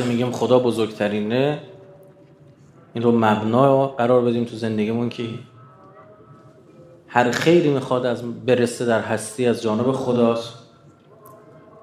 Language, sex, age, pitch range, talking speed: Persian, male, 30-49, 120-165 Hz, 105 wpm